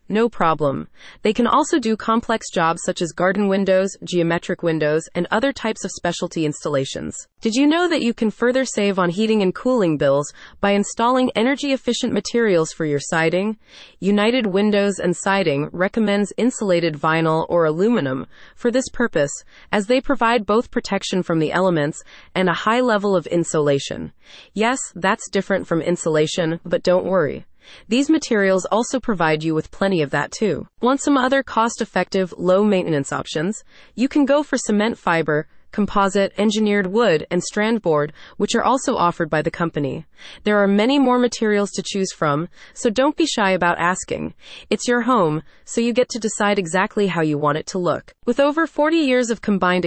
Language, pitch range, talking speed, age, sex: English, 170-230 Hz, 175 wpm, 30-49, female